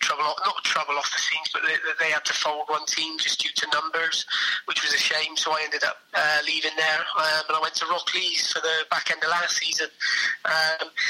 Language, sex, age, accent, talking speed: English, male, 20-39, British, 230 wpm